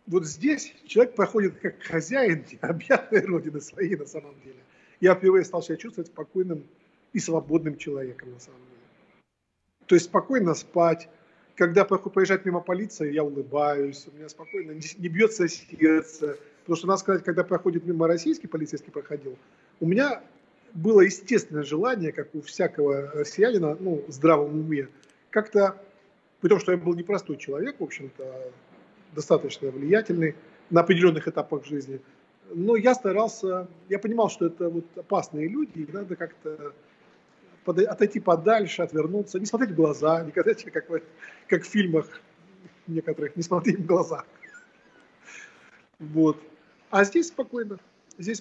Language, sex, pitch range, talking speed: English, male, 155-200 Hz, 140 wpm